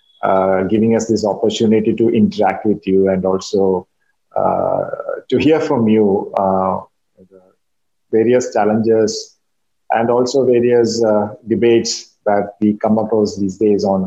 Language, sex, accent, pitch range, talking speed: English, male, Indian, 100-115 Hz, 135 wpm